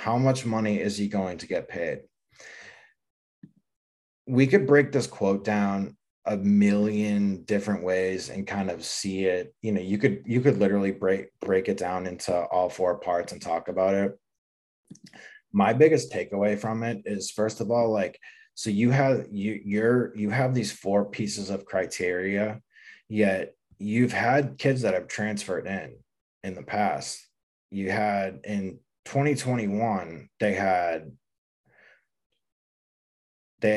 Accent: American